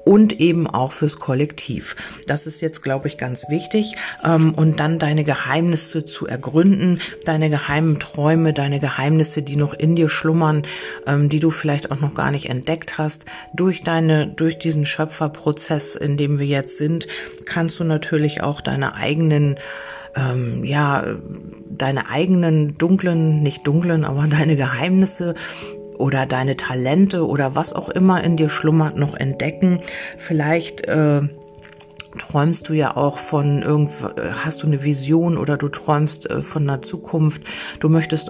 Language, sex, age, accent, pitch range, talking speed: German, female, 40-59, German, 145-160 Hz, 150 wpm